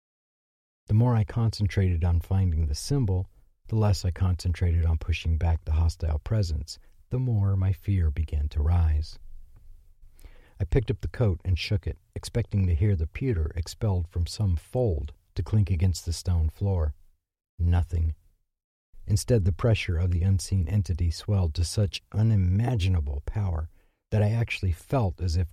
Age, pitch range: 50-69, 85-105 Hz